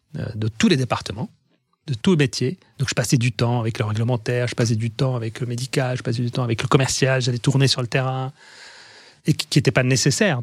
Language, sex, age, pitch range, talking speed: French, male, 30-49, 115-145 Hz, 230 wpm